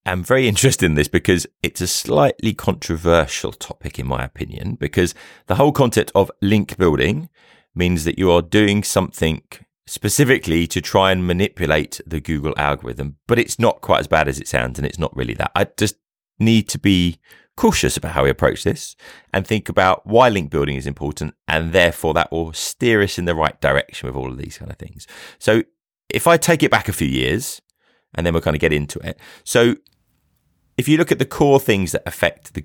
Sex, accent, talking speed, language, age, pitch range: male, British, 210 wpm, English, 30-49, 75-105 Hz